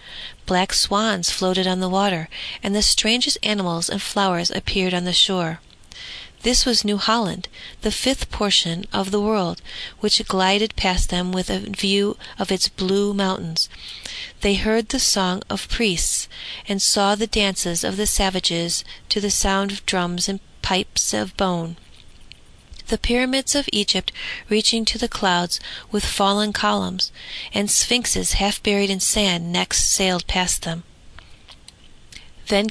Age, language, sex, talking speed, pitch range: 40-59, English, female, 145 wpm, 185-210 Hz